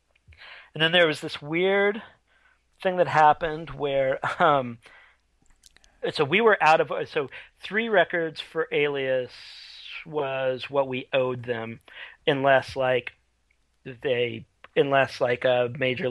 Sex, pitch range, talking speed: male, 125-165 Hz, 125 wpm